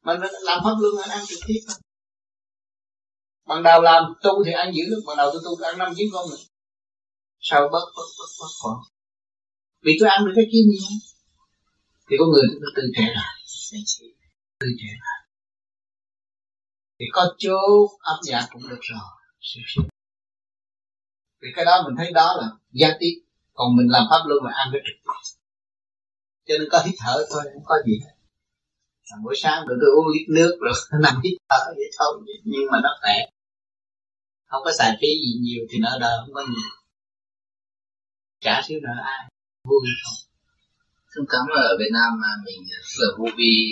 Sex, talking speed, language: male, 180 wpm, Vietnamese